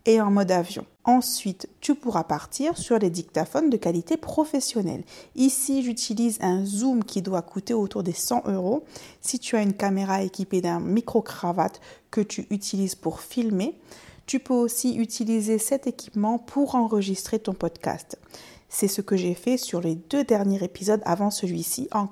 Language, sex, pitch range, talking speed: French, female, 195-250 Hz, 165 wpm